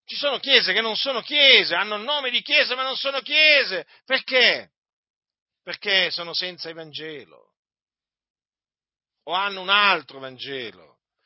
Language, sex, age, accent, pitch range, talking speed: Italian, male, 50-69, native, 165-230 Hz, 140 wpm